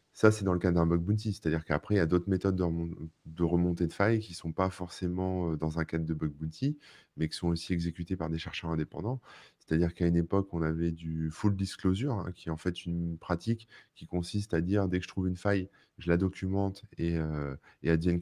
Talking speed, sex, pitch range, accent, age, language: 235 wpm, male, 80-100 Hz, French, 20-39, French